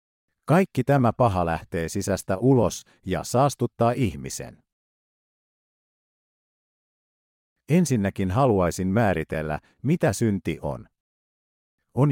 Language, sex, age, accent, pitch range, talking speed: Finnish, male, 50-69, native, 90-130 Hz, 80 wpm